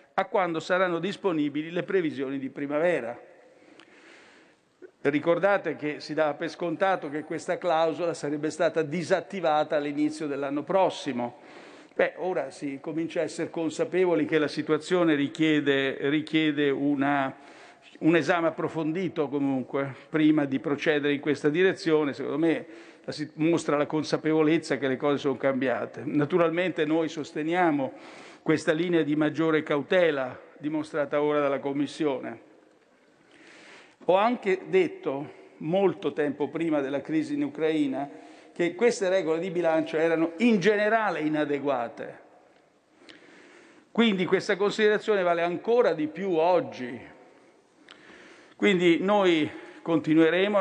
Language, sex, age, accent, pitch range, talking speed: Italian, male, 50-69, native, 150-180 Hz, 115 wpm